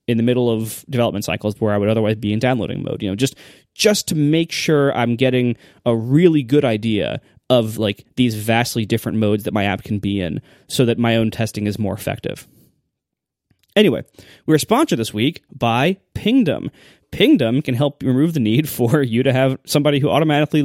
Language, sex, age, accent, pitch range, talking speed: English, male, 20-39, American, 115-155 Hz, 200 wpm